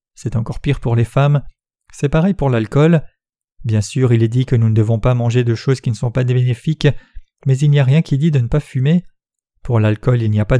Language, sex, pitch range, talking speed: French, male, 120-145 Hz, 255 wpm